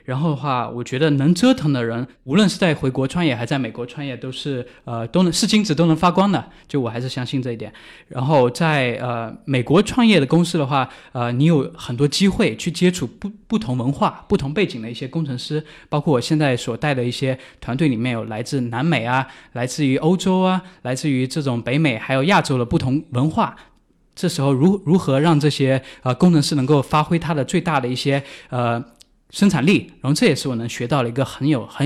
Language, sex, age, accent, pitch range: Chinese, male, 20-39, native, 125-165 Hz